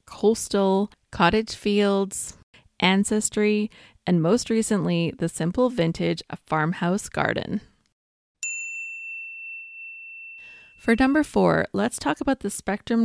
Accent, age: American, 20-39